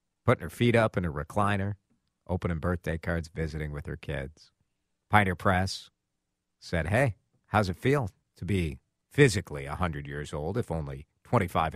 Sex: male